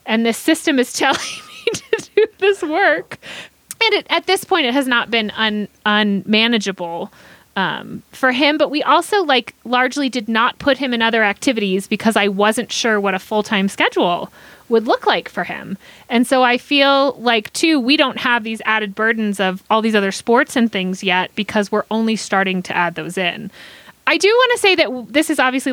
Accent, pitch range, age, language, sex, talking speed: American, 210-290 Hz, 30-49, English, female, 200 wpm